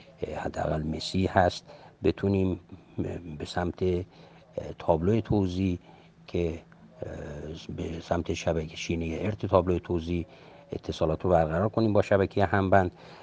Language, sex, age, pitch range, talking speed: Persian, male, 50-69, 80-105 Hz, 110 wpm